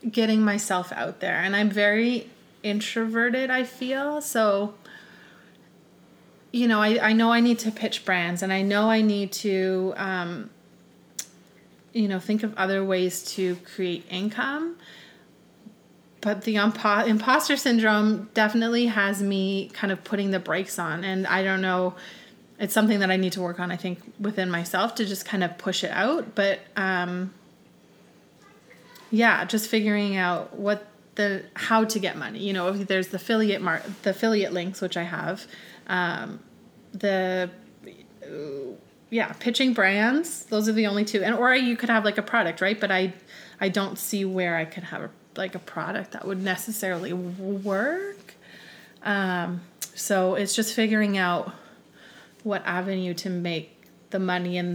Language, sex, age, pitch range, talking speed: English, female, 30-49, 185-220 Hz, 160 wpm